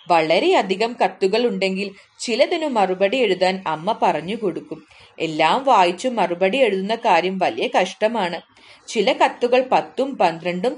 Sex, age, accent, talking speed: female, 30-49, Indian, 130 wpm